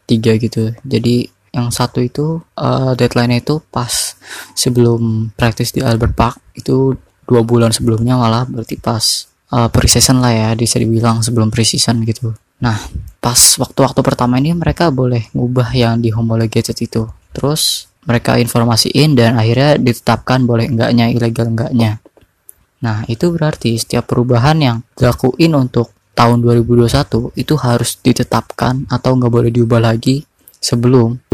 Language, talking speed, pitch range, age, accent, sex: Indonesian, 140 wpm, 115-130 Hz, 20-39, native, female